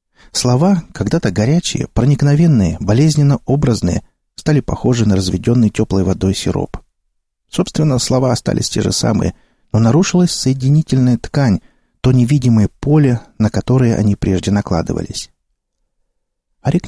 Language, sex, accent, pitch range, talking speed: Russian, male, native, 105-145 Hz, 110 wpm